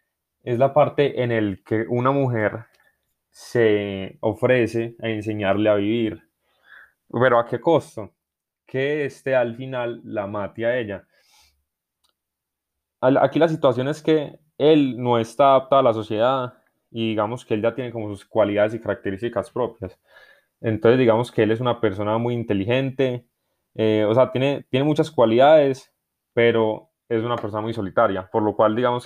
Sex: male